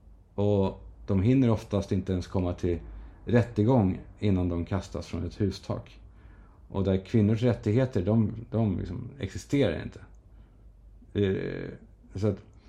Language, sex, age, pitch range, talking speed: Swedish, male, 50-69, 90-115 Hz, 115 wpm